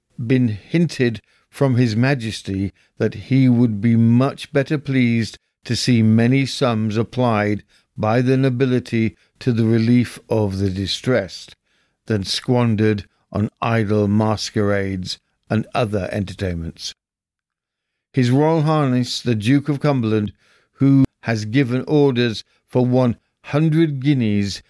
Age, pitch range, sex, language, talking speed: 60-79, 105-135 Hz, male, English, 120 wpm